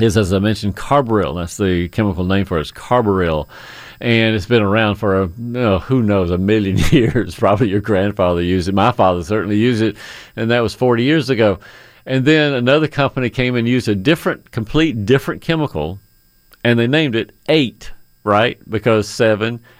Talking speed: 190 wpm